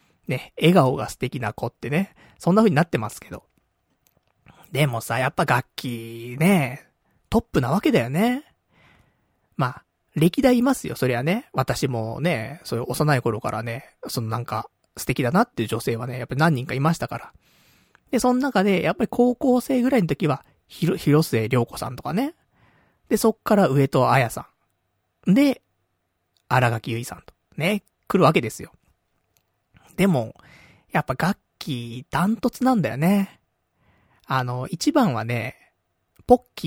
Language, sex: Japanese, male